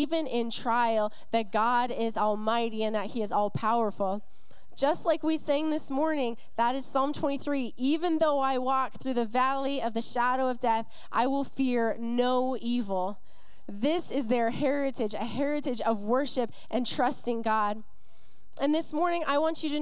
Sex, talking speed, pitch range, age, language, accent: female, 175 wpm, 230-285 Hz, 20-39, English, American